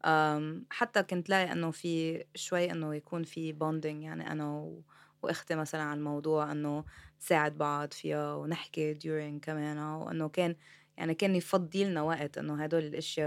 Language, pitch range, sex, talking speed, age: Arabic, 150-165 Hz, female, 155 wpm, 20-39